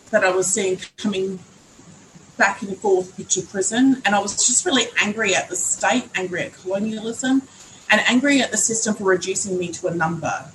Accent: Australian